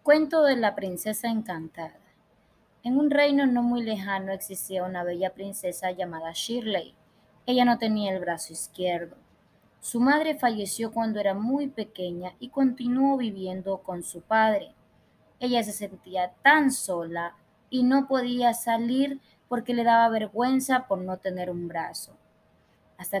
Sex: female